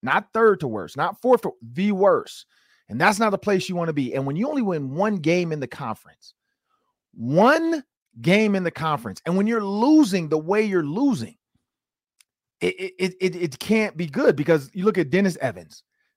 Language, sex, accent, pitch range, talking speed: English, male, American, 135-215 Hz, 200 wpm